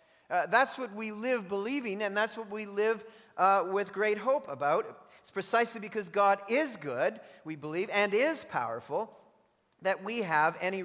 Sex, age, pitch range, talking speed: male, 40-59, 180-220 Hz, 170 wpm